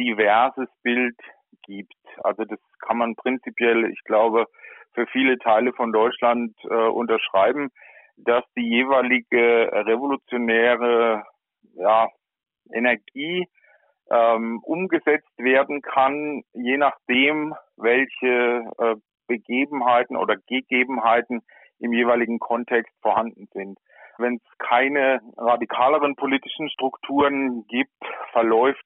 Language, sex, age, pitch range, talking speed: German, male, 40-59, 115-135 Hz, 95 wpm